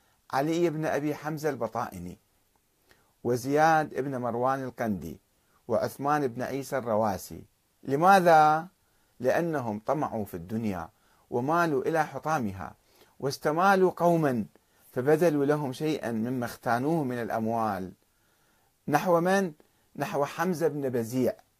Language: Arabic